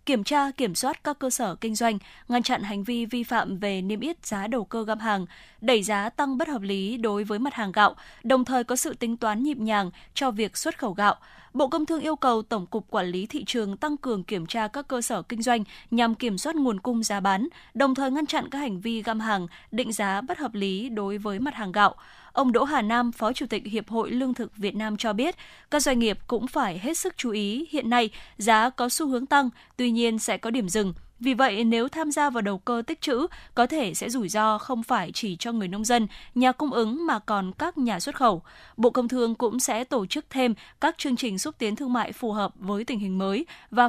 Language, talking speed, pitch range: Vietnamese, 250 wpm, 210-260 Hz